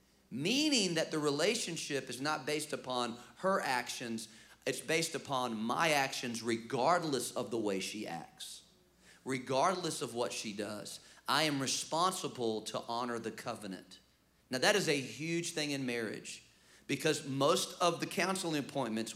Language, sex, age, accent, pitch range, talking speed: English, male, 40-59, American, 115-155 Hz, 145 wpm